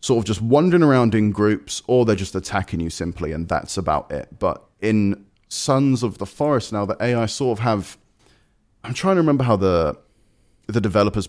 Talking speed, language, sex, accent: 195 wpm, English, male, British